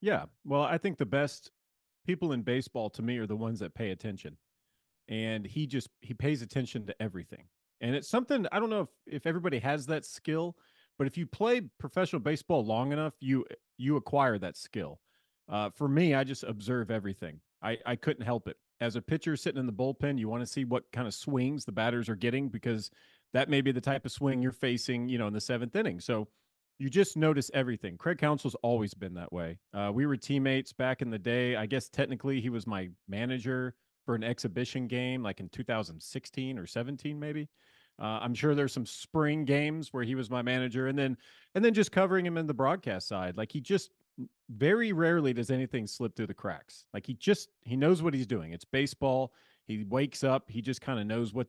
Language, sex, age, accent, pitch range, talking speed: English, male, 30-49, American, 115-145 Hz, 215 wpm